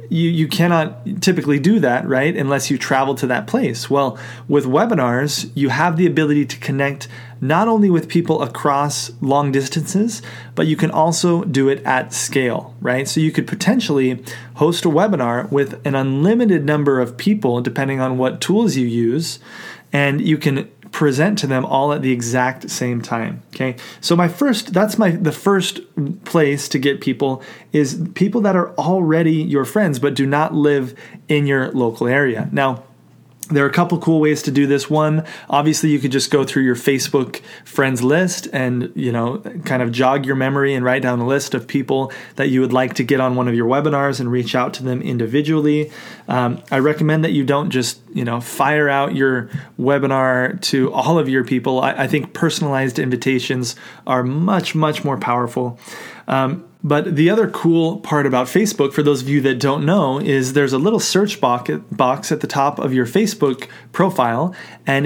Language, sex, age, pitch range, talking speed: English, male, 30-49, 130-160 Hz, 190 wpm